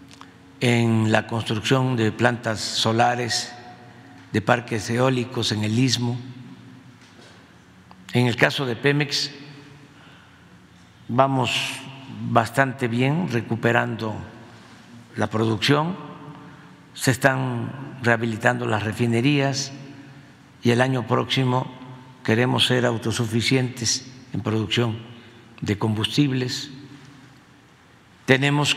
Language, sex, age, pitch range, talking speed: Spanish, male, 50-69, 115-140 Hz, 85 wpm